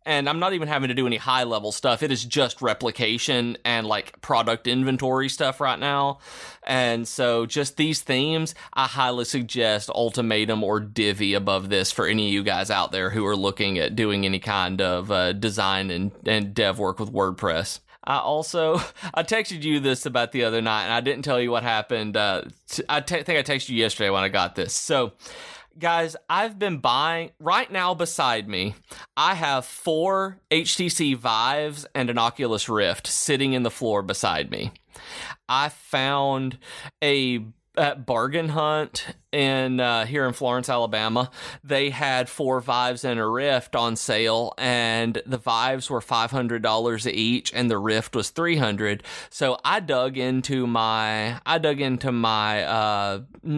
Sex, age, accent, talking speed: male, 30-49, American, 170 wpm